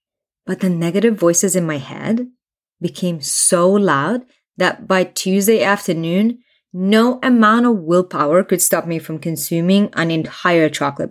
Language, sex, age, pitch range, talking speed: English, female, 20-39, 160-205 Hz, 140 wpm